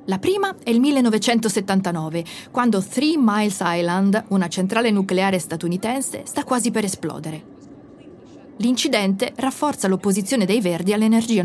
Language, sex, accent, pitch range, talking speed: Italian, female, native, 185-240 Hz, 120 wpm